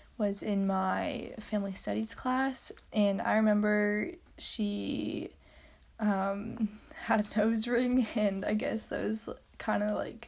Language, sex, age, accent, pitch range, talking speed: English, female, 10-29, American, 205-235 Hz, 135 wpm